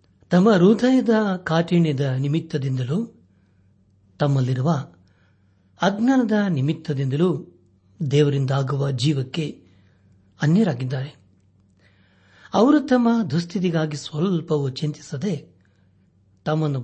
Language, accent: Kannada, native